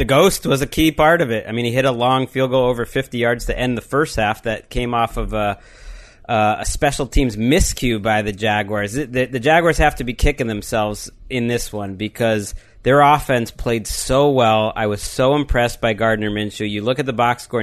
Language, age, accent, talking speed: English, 30-49, American, 225 wpm